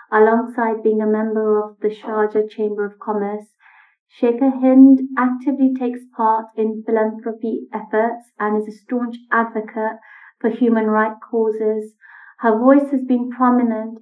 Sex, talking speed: female, 135 wpm